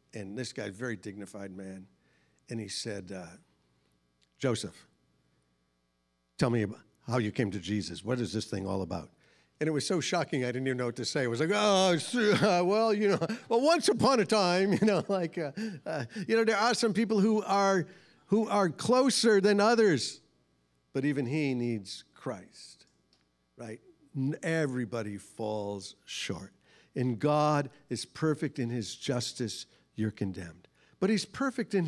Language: English